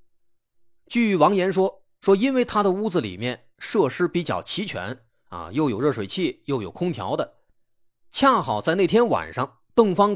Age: 20-39